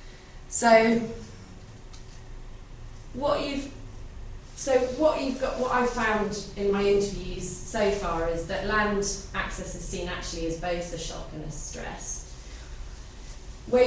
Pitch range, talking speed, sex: 160-200 Hz, 130 wpm, female